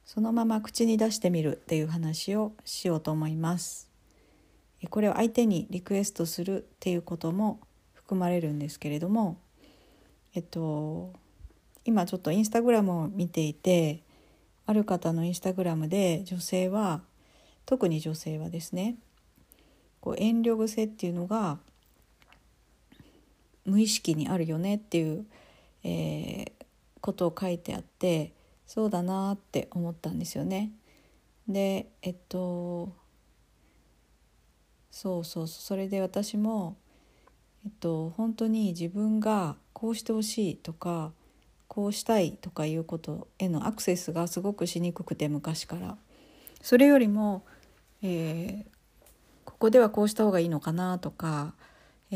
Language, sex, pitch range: Japanese, female, 165-210 Hz